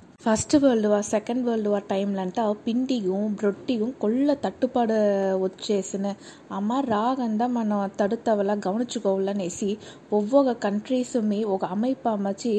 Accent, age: native, 20-39